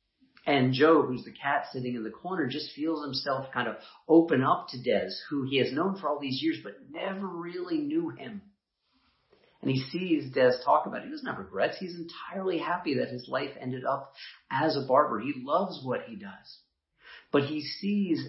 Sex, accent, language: male, American, English